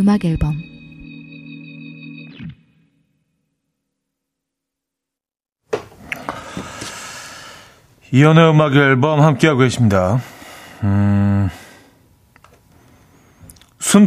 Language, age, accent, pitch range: Korean, 40-59, native, 105-150 Hz